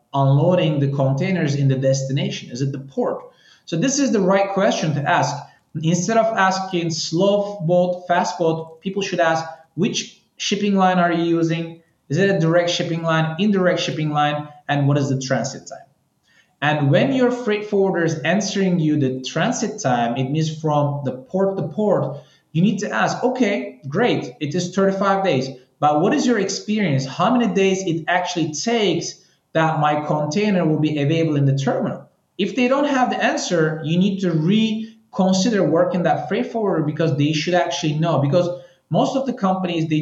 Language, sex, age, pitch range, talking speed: English, male, 20-39, 150-195 Hz, 185 wpm